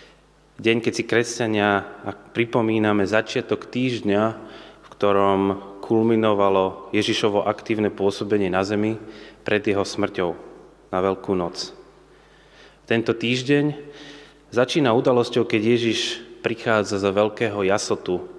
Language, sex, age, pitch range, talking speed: Slovak, male, 30-49, 100-115 Hz, 100 wpm